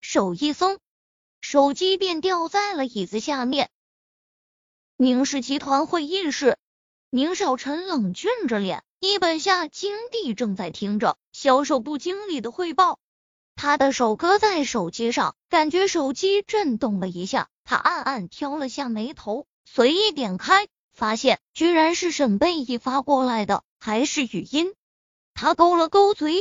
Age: 20-39